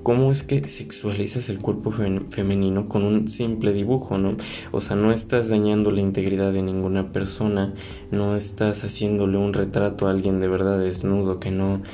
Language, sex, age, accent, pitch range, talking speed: Spanish, male, 20-39, Mexican, 100-110 Hz, 170 wpm